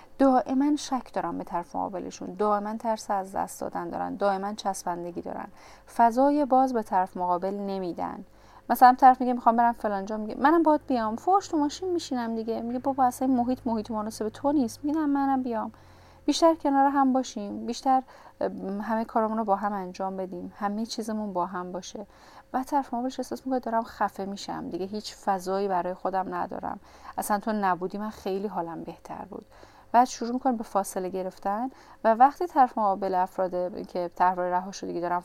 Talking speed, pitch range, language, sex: 175 wpm, 195-255 Hz, Persian, female